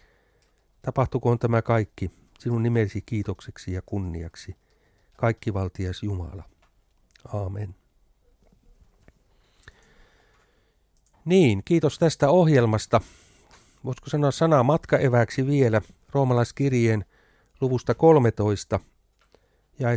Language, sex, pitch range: Finnish, male, 100-135 Hz